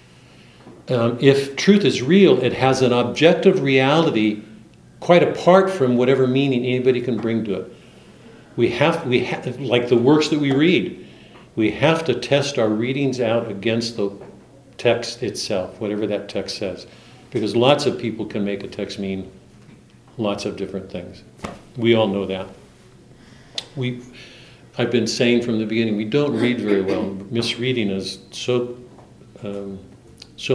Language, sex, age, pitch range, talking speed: English, male, 60-79, 105-130 Hz, 160 wpm